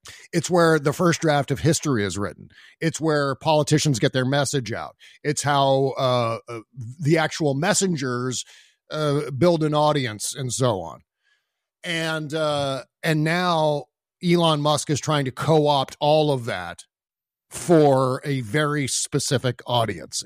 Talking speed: 140 wpm